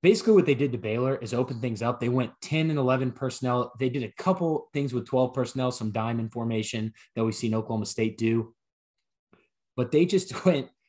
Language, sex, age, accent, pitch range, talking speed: English, male, 20-39, American, 110-135 Hz, 205 wpm